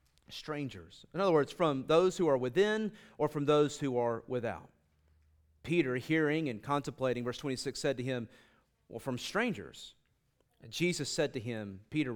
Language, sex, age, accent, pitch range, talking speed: English, male, 30-49, American, 130-175 Hz, 165 wpm